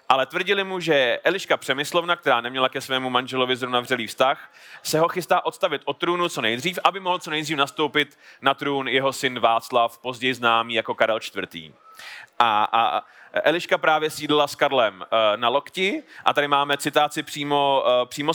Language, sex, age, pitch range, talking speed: Czech, male, 30-49, 135-190 Hz, 170 wpm